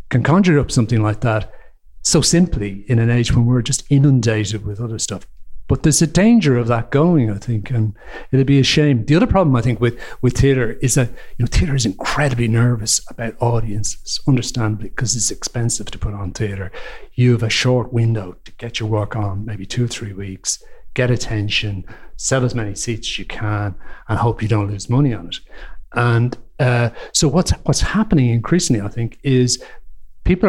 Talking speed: 200 wpm